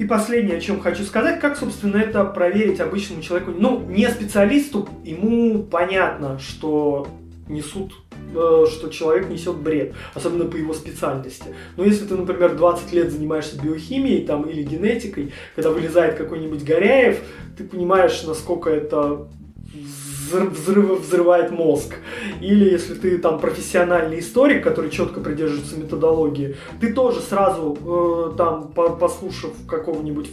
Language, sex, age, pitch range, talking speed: Russian, male, 20-39, 155-195 Hz, 130 wpm